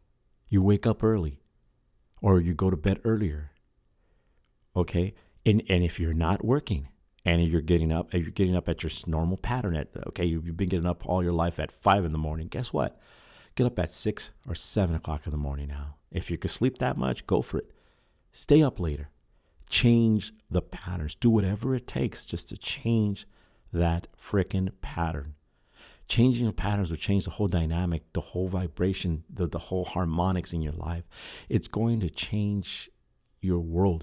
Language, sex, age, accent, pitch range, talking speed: English, male, 50-69, American, 80-100 Hz, 185 wpm